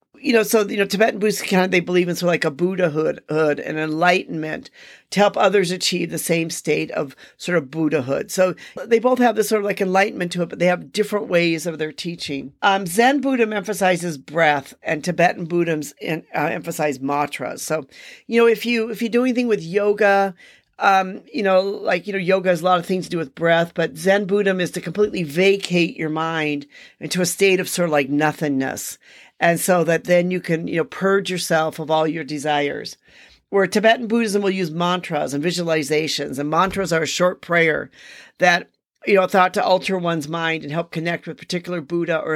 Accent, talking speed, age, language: American, 210 wpm, 50-69, English